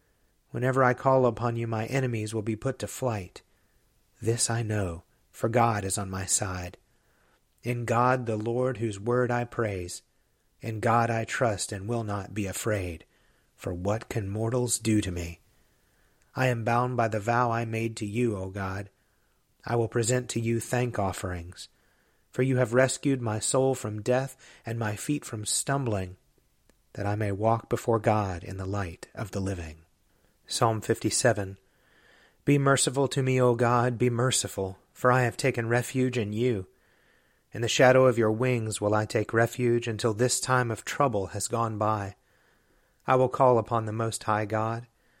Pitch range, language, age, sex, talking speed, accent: 105-125 Hz, English, 30-49, male, 175 wpm, American